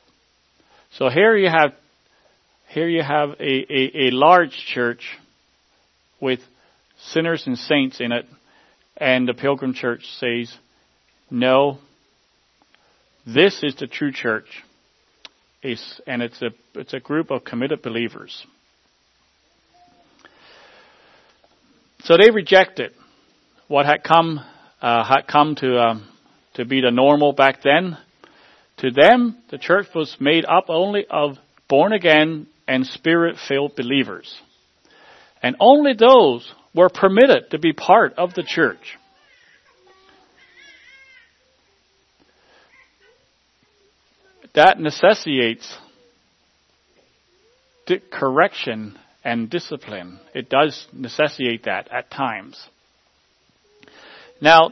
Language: English